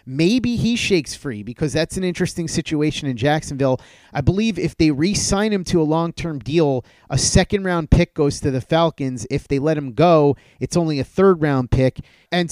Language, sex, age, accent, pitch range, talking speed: English, male, 30-49, American, 135-165 Hz, 185 wpm